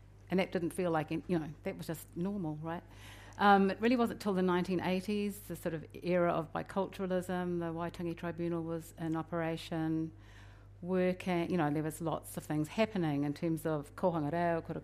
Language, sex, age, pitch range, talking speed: English, female, 50-69, 155-180 Hz, 190 wpm